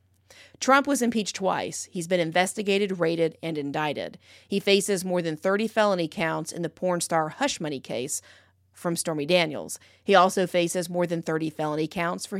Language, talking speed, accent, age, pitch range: English, 175 wpm, American, 40-59, 160-205 Hz